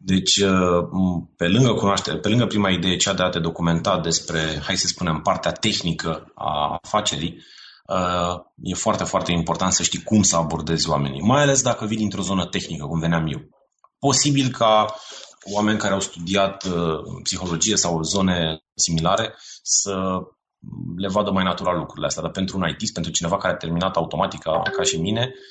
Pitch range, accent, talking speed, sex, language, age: 85-110 Hz, native, 165 wpm, male, Romanian, 30-49